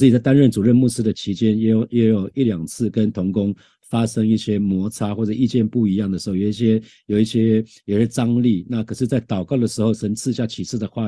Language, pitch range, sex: Chinese, 100-120 Hz, male